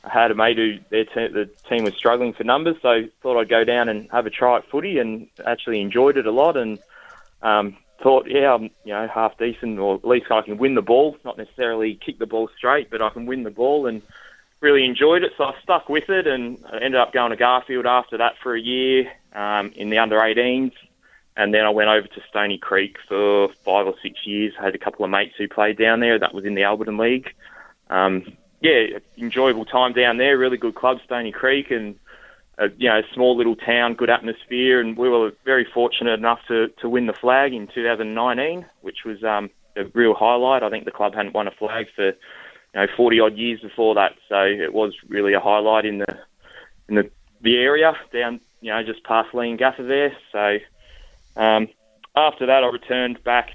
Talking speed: 220 wpm